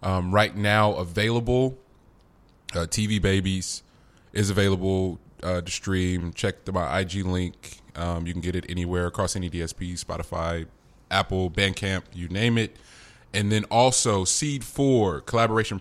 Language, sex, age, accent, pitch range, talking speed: English, male, 20-39, American, 90-105 Hz, 140 wpm